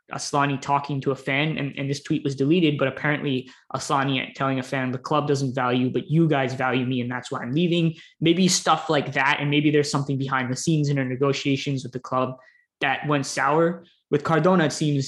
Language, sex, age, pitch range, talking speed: English, male, 20-39, 135-155 Hz, 220 wpm